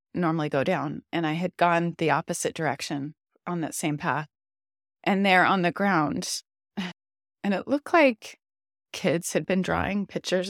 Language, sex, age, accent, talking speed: English, female, 30-49, American, 160 wpm